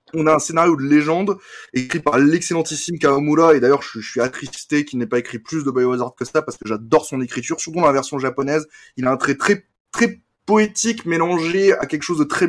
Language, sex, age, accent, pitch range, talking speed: French, male, 20-39, French, 130-160 Hz, 230 wpm